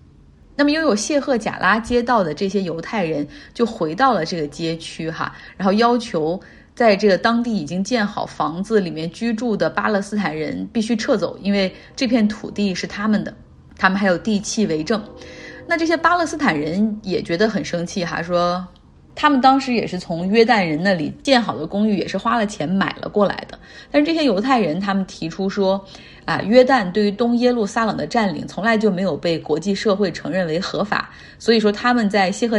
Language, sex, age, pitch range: Chinese, female, 30-49, 175-230 Hz